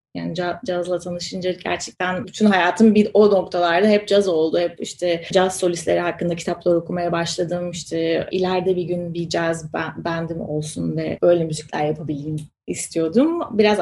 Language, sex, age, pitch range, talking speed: Turkish, female, 30-49, 165-195 Hz, 150 wpm